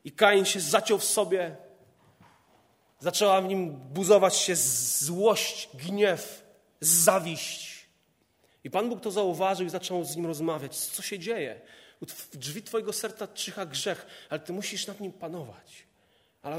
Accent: native